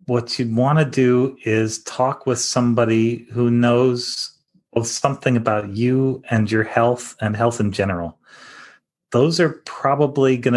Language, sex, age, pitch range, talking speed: English, male, 30-49, 115-140 Hz, 140 wpm